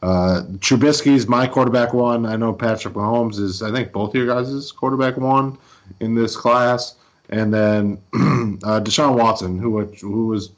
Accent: American